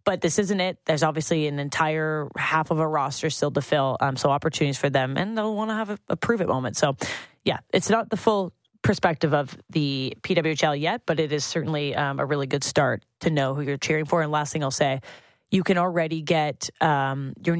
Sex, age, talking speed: female, 20-39, 225 wpm